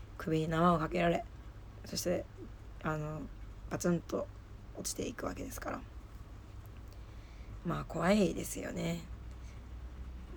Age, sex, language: 20-39, female, Japanese